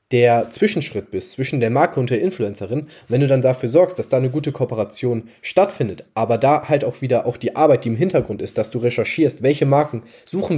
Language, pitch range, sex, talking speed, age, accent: German, 115-140 Hz, male, 215 wpm, 10-29, German